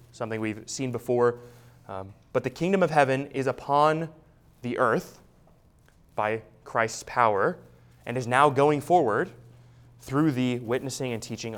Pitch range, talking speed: 120-145 Hz, 140 wpm